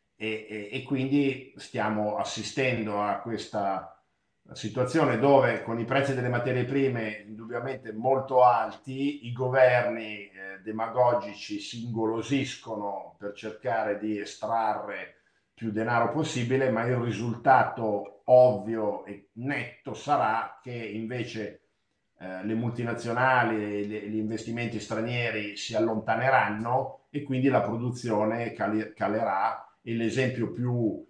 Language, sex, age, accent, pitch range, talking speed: Italian, male, 50-69, native, 105-125 Hz, 110 wpm